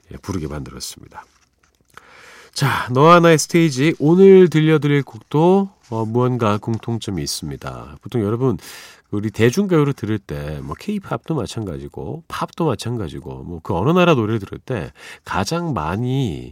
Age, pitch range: 40-59, 90-145 Hz